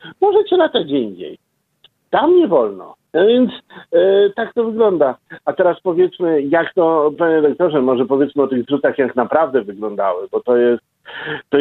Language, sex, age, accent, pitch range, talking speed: Polish, male, 50-69, native, 130-190 Hz, 165 wpm